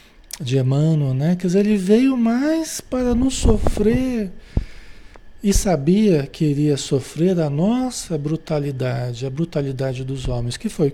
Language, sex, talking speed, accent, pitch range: Portuguese, male, 145 wpm, Brazilian, 135-185 Hz